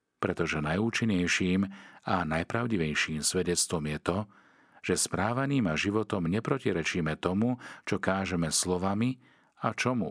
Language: Slovak